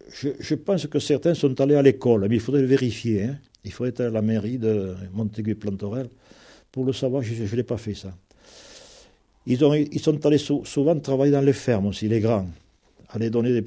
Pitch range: 110-140 Hz